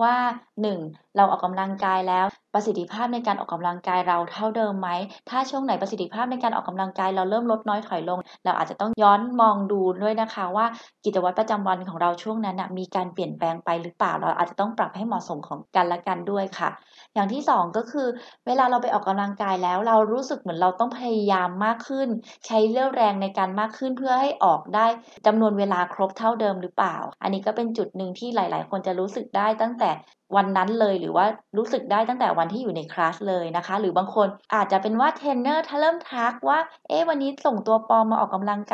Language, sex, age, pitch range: Thai, female, 20-39, 190-230 Hz